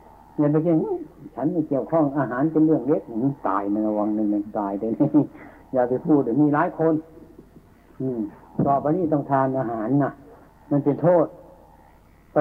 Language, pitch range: Thai, 110-150 Hz